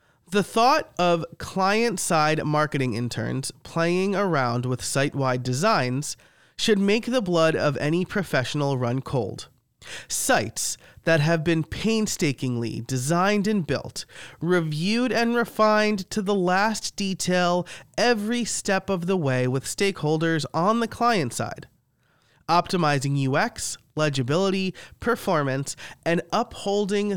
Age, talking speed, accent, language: 30-49, 115 wpm, American, English